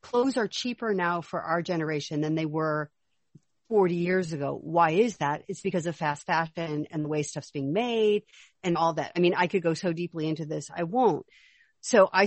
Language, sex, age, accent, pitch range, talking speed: English, female, 50-69, American, 170-225 Hz, 215 wpm